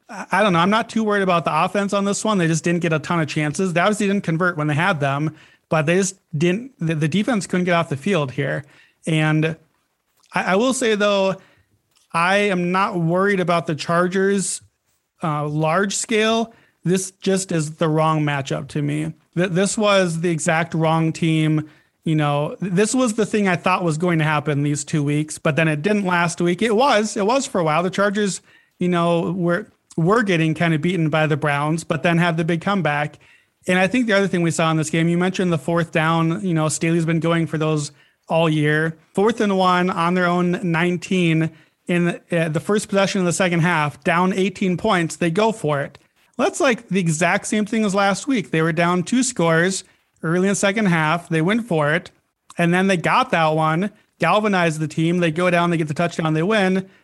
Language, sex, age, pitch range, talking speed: English, male, 40-59, 160-195 Hz, 220 wpm